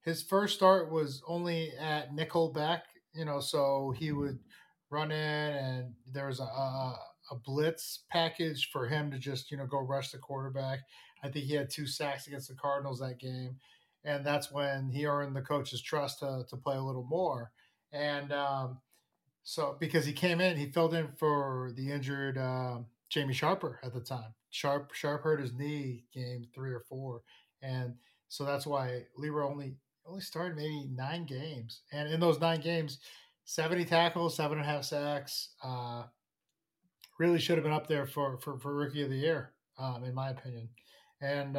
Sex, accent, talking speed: male, American, 190 wpm